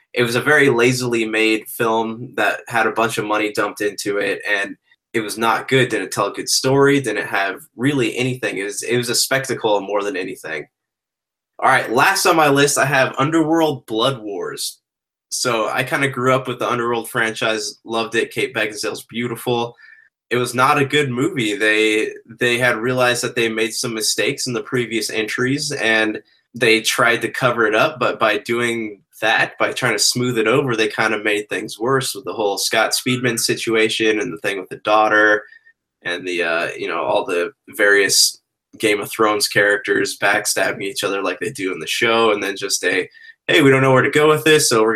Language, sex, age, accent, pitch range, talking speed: English, male, 20-39, American, 110-130 Hz, 205 wpm